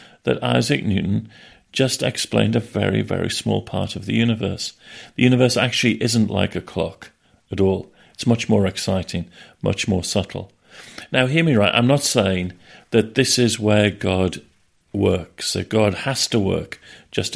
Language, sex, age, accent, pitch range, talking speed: English, male, 50-69, British, 100-120 Hz, 165 wpm